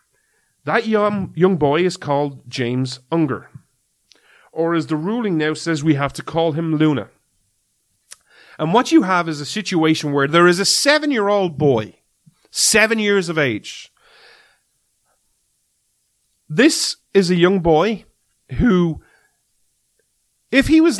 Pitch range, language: 145-210 Hz, English